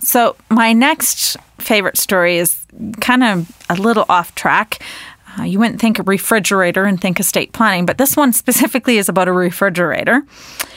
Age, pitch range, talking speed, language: 30-49, 185-235 Hz, 165 wpm, English